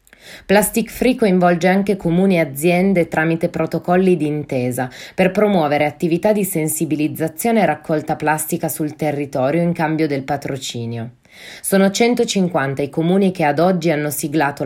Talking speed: 135 wpm